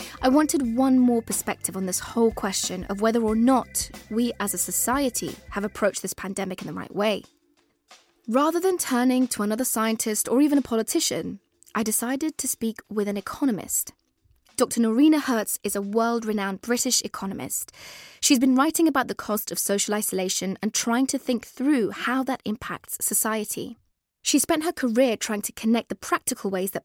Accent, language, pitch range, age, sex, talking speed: British, English, 200-255 Hz, 20-39, female, 175 wpm